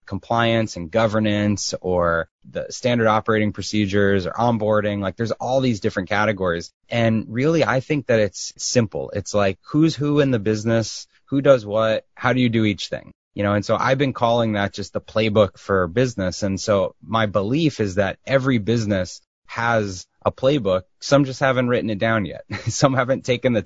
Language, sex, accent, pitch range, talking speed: English, male, American, 100-120 Hz, 190 wpm